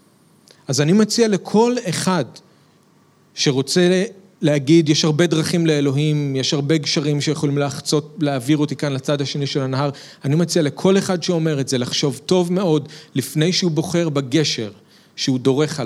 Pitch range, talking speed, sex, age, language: 135-170 Hz, 150 wpm, male, 40-59, Hebrew